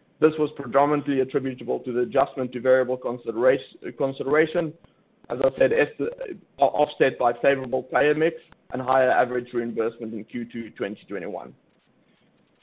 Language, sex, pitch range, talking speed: English, male, 125-150 Hz, 120 wpm